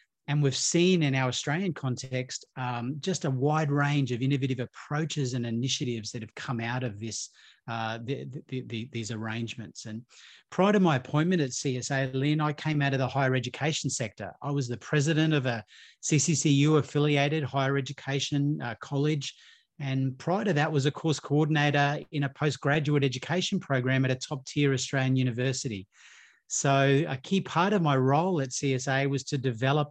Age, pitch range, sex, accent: 30-49, 130-150 Hz, male, Australian